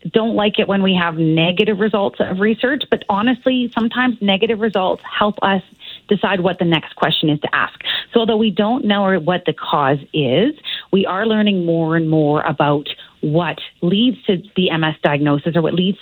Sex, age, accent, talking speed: female, 30-49, American, 185 wpm